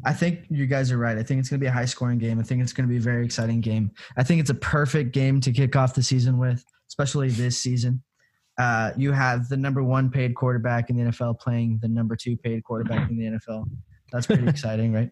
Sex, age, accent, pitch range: male, 20-39, American, 120-145 Hz